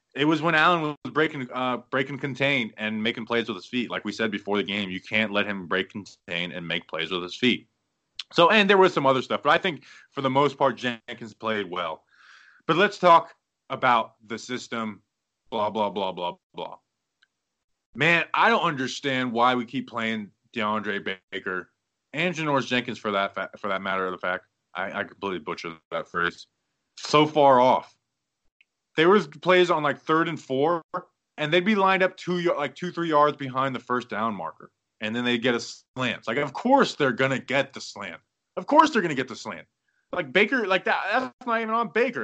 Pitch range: 110-170 Hz